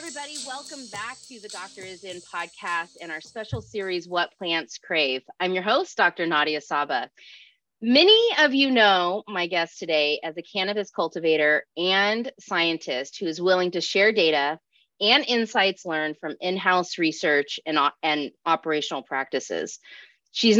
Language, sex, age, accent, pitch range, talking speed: English, female, 30-49, American, 165-220 Hz, 150 wpm